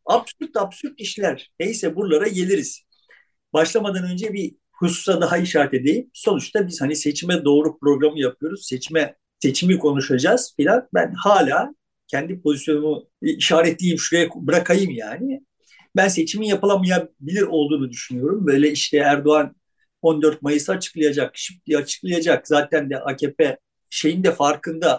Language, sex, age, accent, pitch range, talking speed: Turkish, male, 50-69, native, 150-200 Hz, 120 wpm